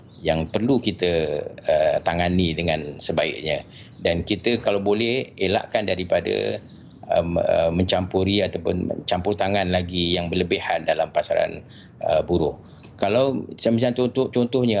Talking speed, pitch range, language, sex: 115 wpm, 95-115 Hz, Malay, male